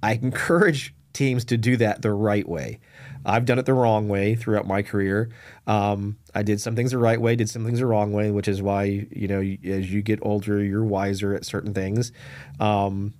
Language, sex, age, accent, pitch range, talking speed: English, male, 30-49, American, 105-125 Hz, 215 wpm